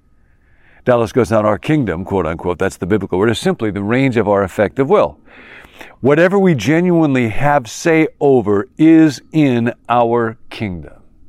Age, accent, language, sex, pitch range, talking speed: 50-69, American, English, male, 110-140 Hz, 150 wpm